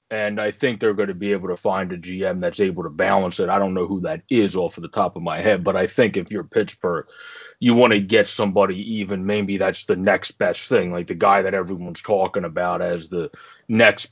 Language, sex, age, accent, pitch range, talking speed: English, male, 20-39, American, 90-105 Hz, 240 wpm